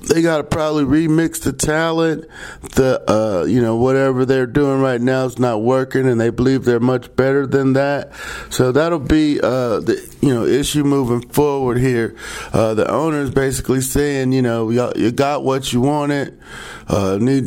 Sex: male